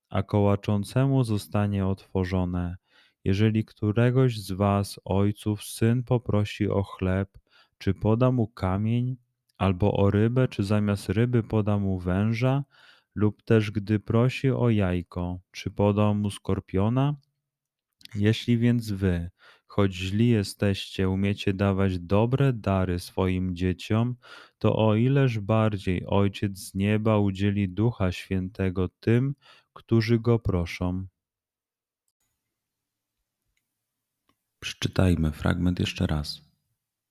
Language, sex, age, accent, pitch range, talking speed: Polish, male, 30-49, native, 90-115 Hz, 105 wpm